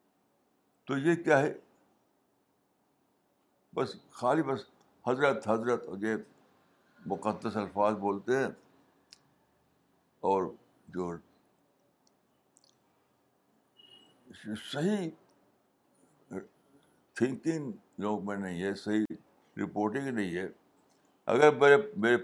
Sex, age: male, 60-79